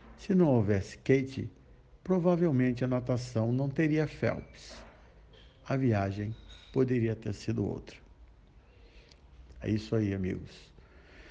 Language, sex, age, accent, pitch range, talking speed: Portuguese, male, 60-79, Brazilian, 110-130 Hz, 105 wpm